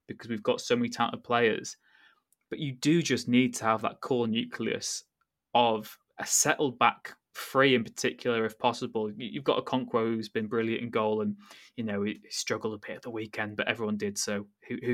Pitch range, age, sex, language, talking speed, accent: 115-170 Hz, 20-39, male, English, 200 wpm, British